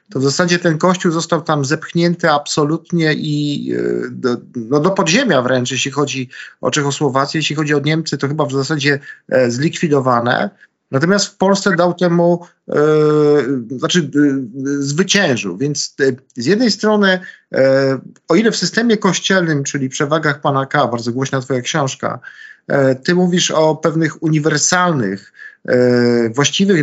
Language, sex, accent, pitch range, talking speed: Polish, male, native, 140-175 Hz, 130 wpm